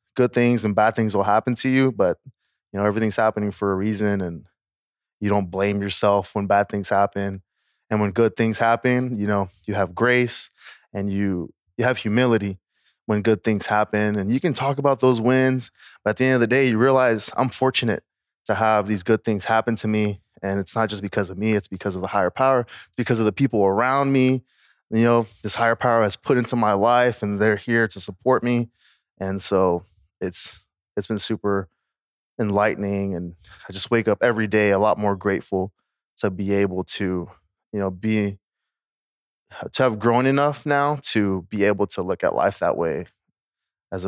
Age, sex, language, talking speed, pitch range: 20-39, male, English, 200 wpm, 100-115 Hz